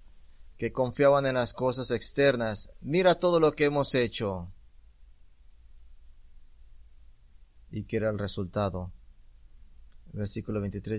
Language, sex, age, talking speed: English, male, 30-49, 105 wpm